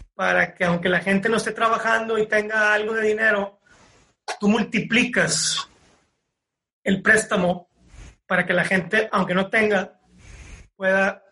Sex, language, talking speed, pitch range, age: male, Spanish, 135 wpm, 180-225 Hz, 30-49